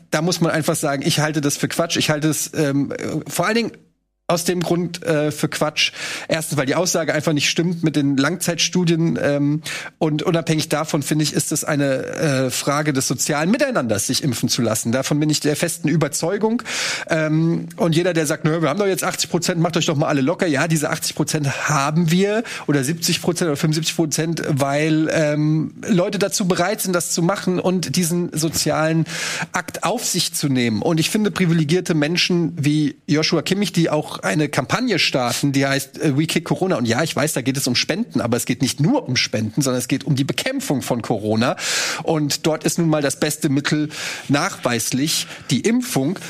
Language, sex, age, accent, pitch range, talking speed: German, male, 30-49, German, 145-175 Hz, 200 wpm